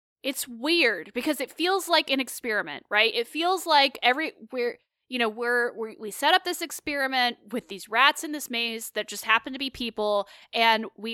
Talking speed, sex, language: 200 wpm, female, English